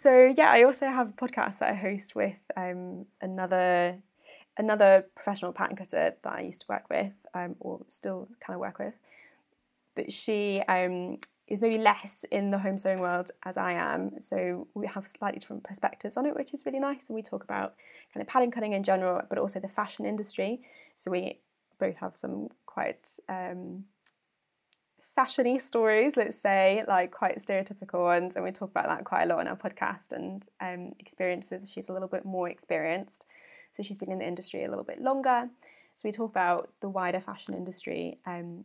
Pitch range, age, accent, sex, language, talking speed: 180-220 Hz, 20-39, British, female, English, 195 wpm